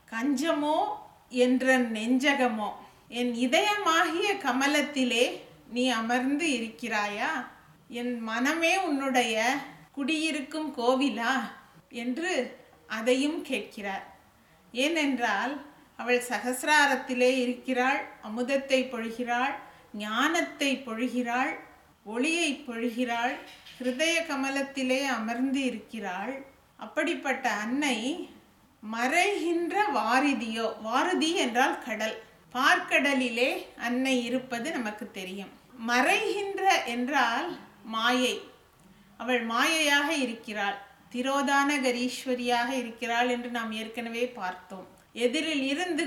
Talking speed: 75 wpm